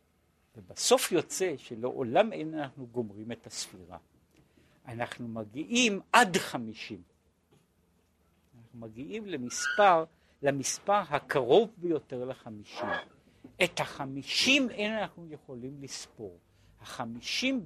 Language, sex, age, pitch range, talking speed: Hebrew, male, 50-69, 120-175 Hz, 90 wpm